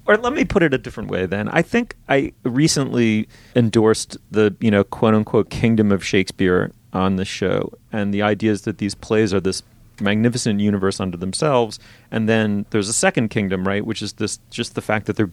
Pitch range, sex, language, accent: 100-120 Hz, male, English, American